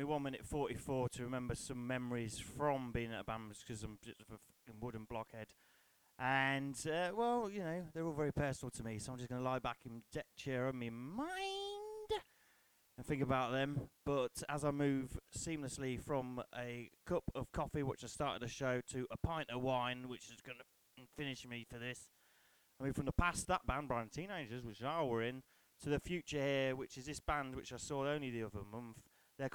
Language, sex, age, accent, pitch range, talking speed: English, male, 30-49, British, 120-150 Hz, 210 wpm